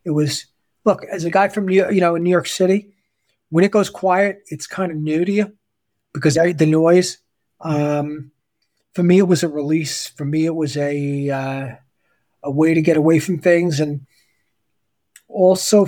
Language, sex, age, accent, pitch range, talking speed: English, male, 40-59, American, 145-175 Hz, 180 wpm